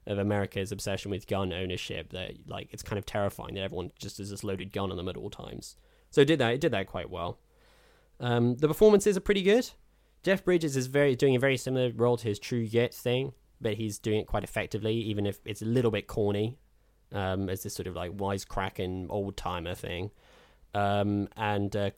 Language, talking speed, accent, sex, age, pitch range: English, 215 wpm, British, male, 10-29, 100-120 Hz